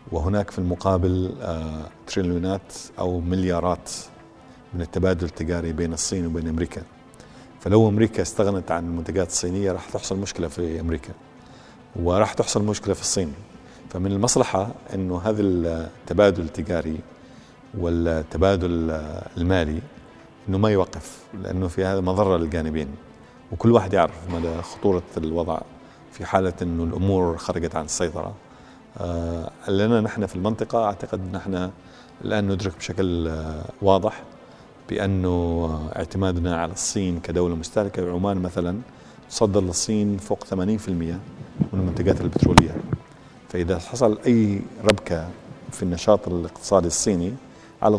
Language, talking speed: Arabic, 120 wpm